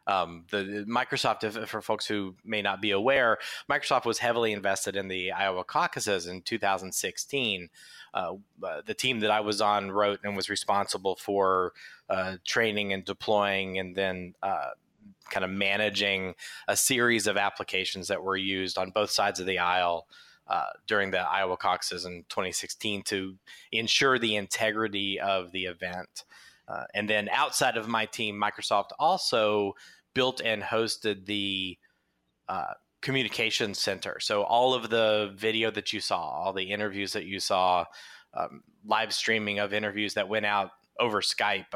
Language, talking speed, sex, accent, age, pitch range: English, 160 wpm, male, American, 30-49, 95-110 Hz